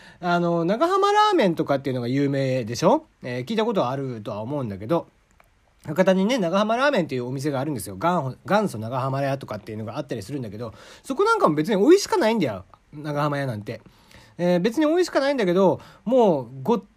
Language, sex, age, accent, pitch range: Japanese, male, 40-59, native, 135-215 Hz